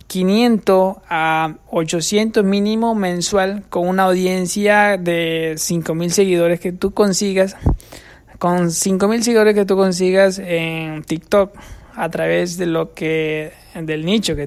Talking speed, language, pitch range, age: 125 wpm, Spanish, 170-200 Hz, 20-39